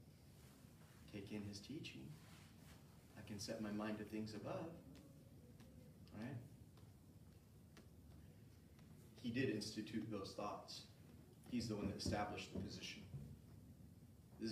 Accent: American